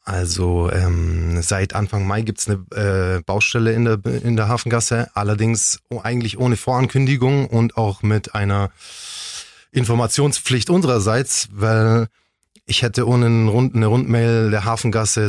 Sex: male